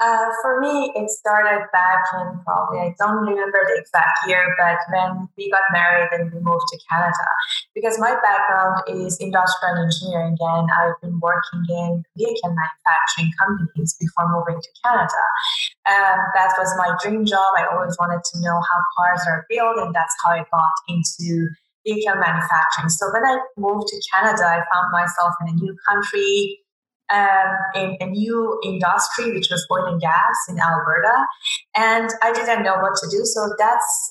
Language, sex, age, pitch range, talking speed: English, female, 20-39, 175-215 Hz, 175 wpm